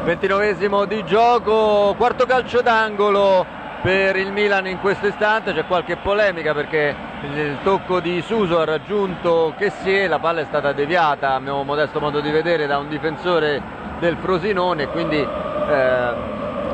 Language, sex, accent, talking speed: Italian, male, native, 155 wpm